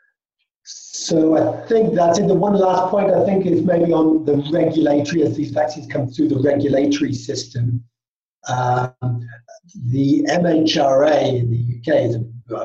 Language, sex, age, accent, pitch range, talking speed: English, male, 50-69, British, 120-150 Hz, 150 wpm